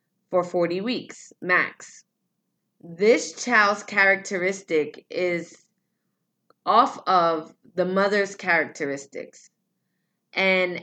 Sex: female